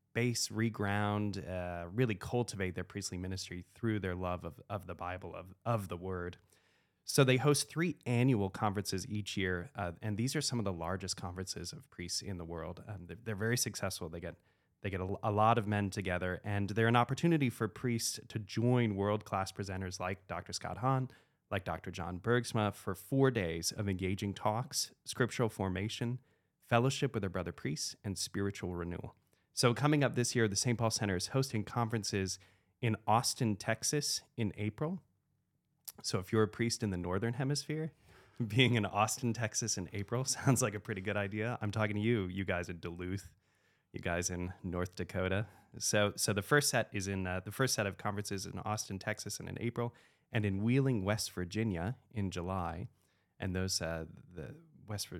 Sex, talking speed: male, 185 wpm